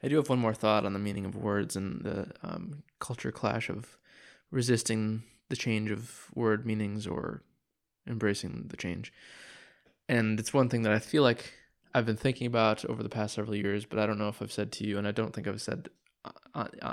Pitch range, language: 105-125 Hz, English